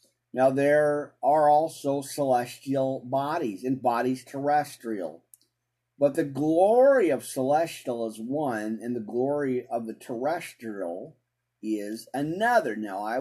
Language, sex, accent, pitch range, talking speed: English, male, American, 120-150 Hz, 120 wpm